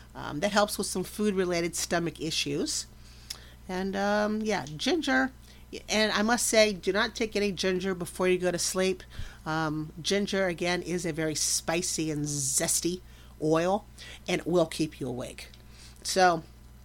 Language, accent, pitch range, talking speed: English, American, 130-195 Hz, 155 wpm